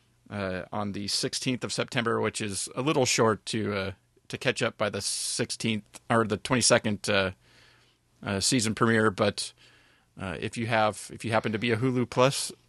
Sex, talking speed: male, 185 wpm